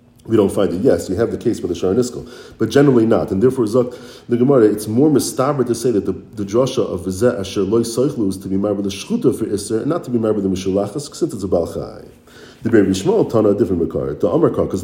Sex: male